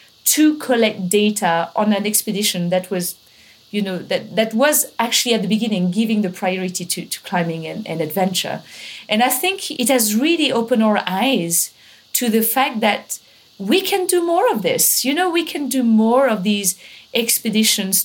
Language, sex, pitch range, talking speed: English, female, 200-250 Hz, 180 wpm